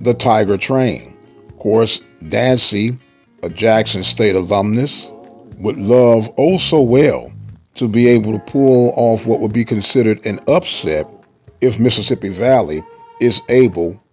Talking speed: 135 wpm